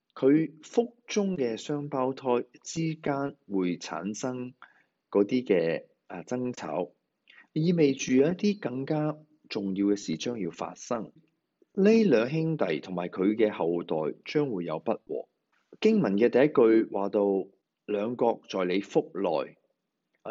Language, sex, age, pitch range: Chinese, male, 30-49, 105-155 Hz